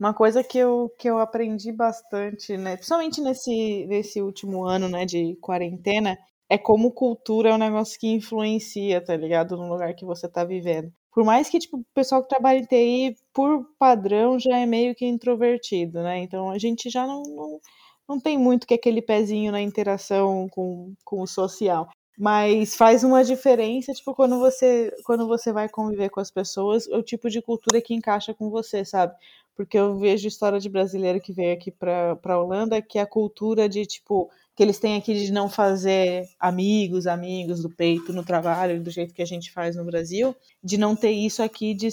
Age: 20-39